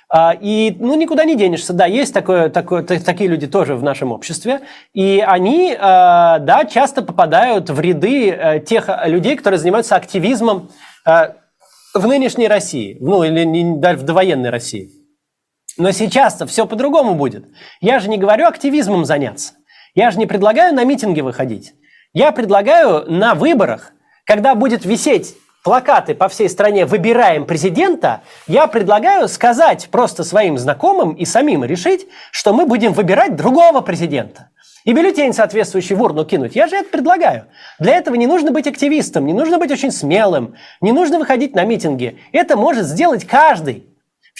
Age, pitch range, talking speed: 30-49, 185-295 Hz, 150 wpm